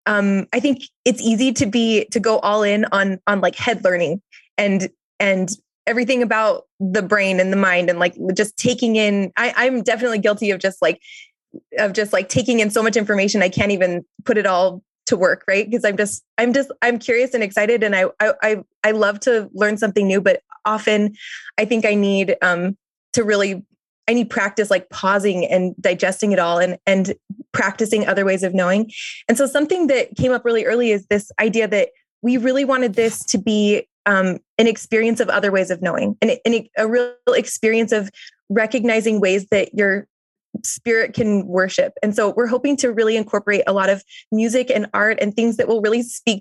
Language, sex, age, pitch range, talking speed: English, female, 20-39, 195-235 Hz, 200 wpm